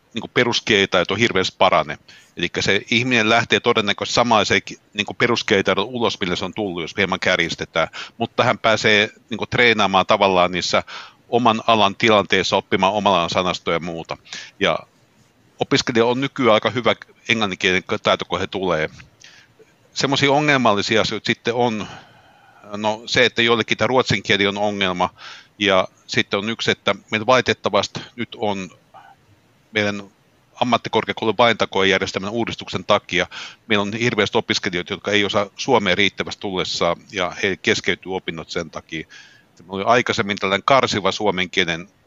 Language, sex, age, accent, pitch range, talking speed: Finnish, male, 60-79, native, 95-120 Hz, 140 wpm